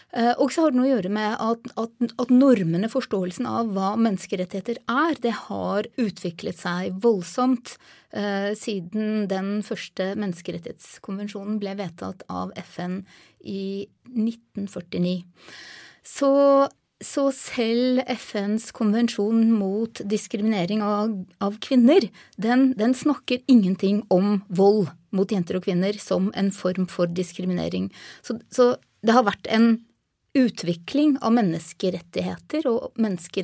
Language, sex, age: English, female, 30-49